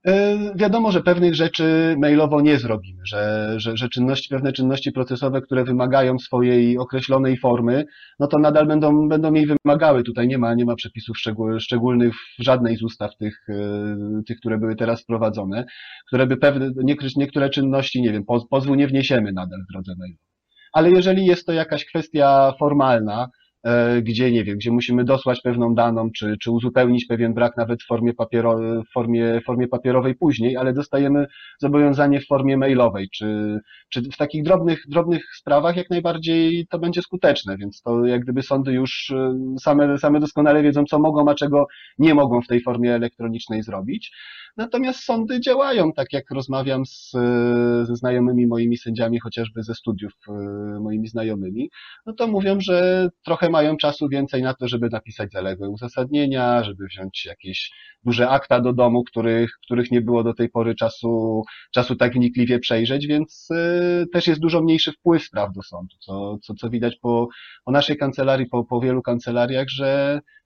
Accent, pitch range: native, 115-145 Hz